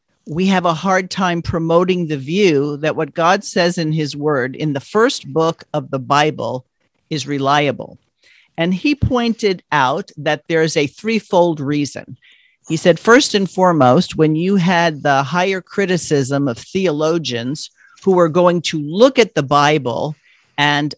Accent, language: American, English